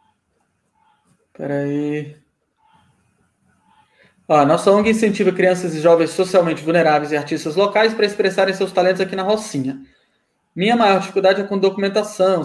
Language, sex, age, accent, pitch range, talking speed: Portuguese, male, 20-39, Brazilian, 170-215 Hz, 125 wpm